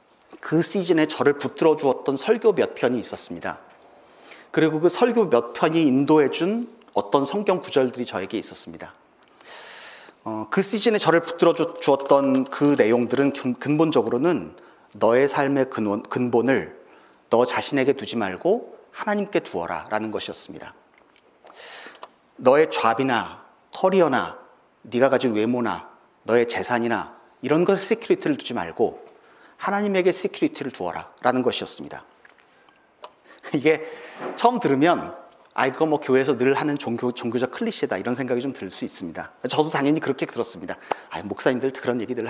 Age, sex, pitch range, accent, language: 40-59, male, 125-200 Hz, native, Korean